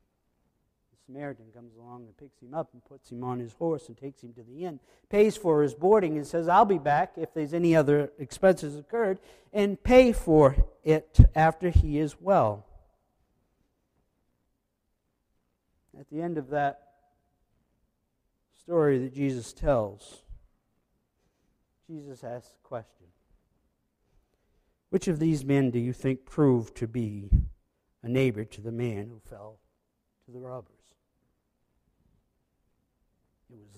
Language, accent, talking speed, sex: English, American, 135 wpm, male